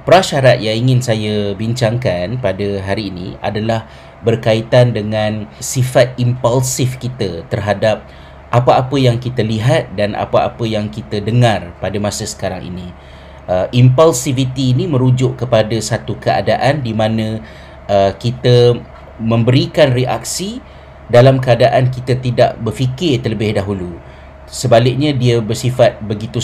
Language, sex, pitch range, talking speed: Malay, male, 105-125 Hz, 120 wpm